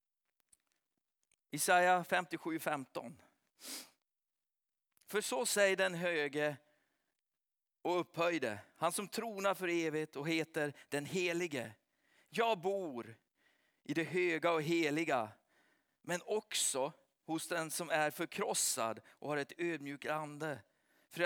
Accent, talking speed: native, 110 wpm